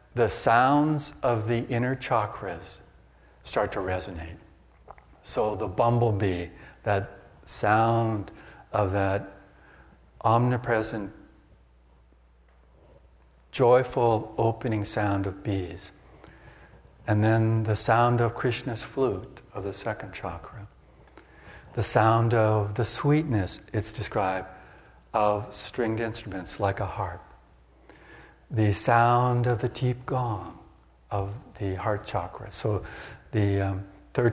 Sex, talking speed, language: male, 105 wpm, English